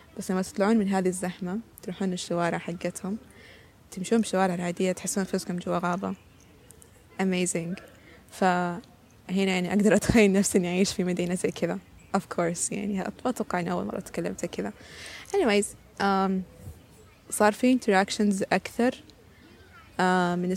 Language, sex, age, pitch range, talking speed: Arabic, female, 20-39, 180-220 Hz, 125 wpm